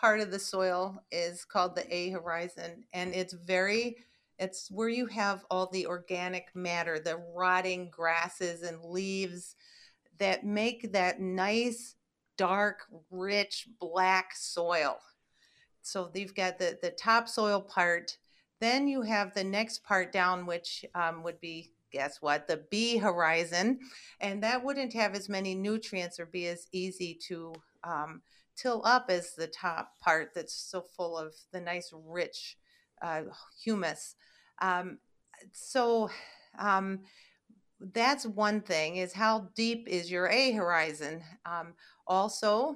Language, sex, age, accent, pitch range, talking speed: English, female, 40-59, American, 175-210 Hz, 140 wpm